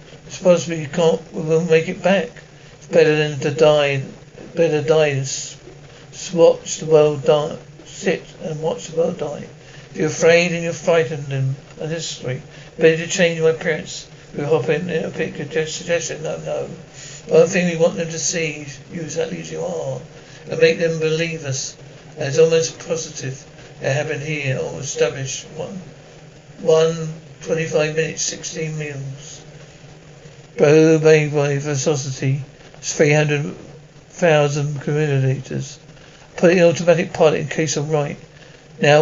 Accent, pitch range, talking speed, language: British, 150-165 Hz, 145 wpm, English